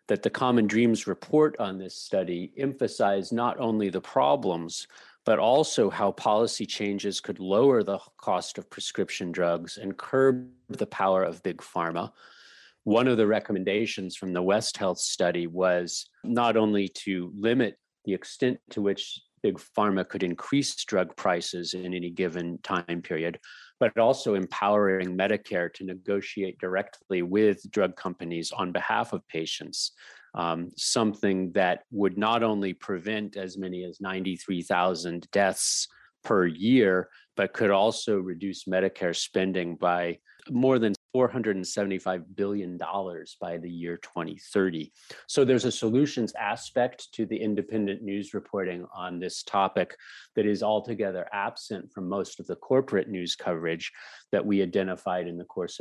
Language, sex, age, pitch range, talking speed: English, male, 40-59, 90-105 Hz, 145 wpm